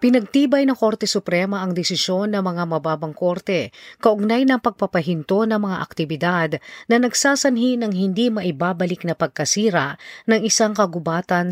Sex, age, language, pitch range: female, 40-59, Filipino, 160-220 Hz